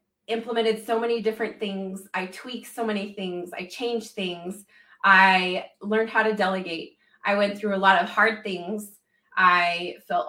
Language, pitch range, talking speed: English, 190-225 Hz, 165 wpm